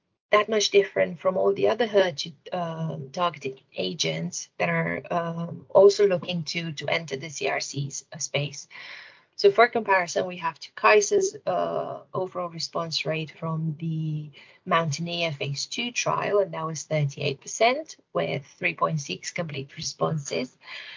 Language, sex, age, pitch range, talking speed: English, female, 30-49, 155-195 Hz, 140 wpm